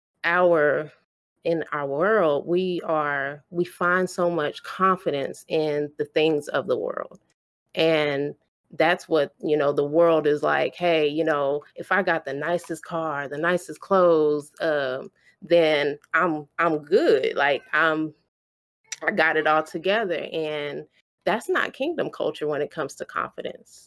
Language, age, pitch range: English, 30-49, 145-175 Hz